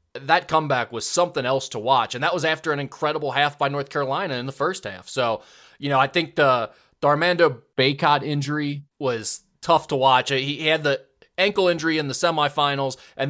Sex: male